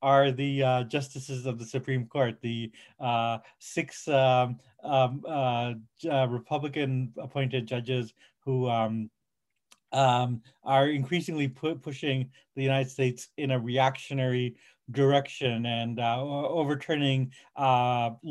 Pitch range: 125-140 Hz